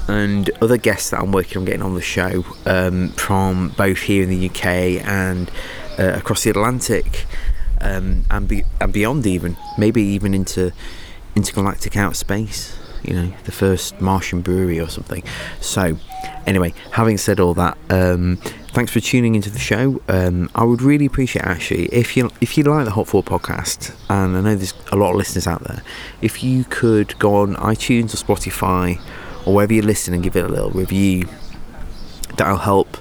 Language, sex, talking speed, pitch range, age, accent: English, male, 180 wpm, 90-105 Hz, 20-39, British